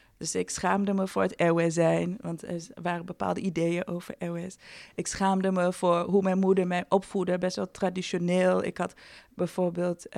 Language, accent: Dutch, Dutch